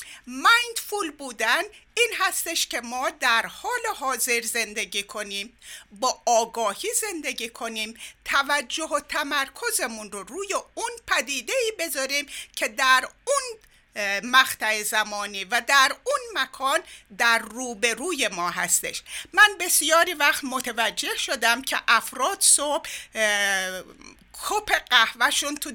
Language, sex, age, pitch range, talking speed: Persian, female, 50-69, 230-345 Hz, 110 wpm